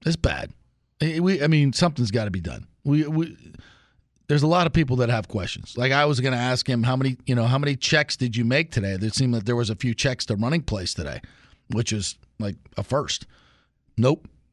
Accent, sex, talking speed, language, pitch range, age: American, male, 235 wpm, English, 110-140 Hz, 40-59